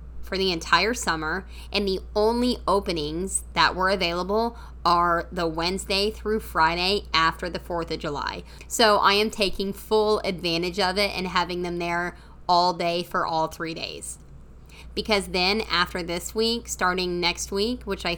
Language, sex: English, female